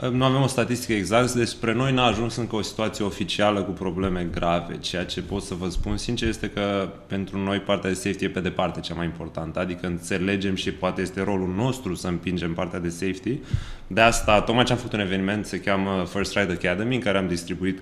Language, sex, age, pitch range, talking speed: Romanian, male, 20-39, 95-110 Hz, 220 wpm